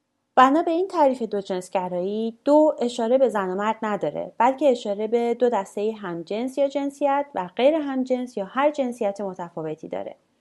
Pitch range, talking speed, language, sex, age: 190-255 Hz, 180 wpm, English, female, 30-49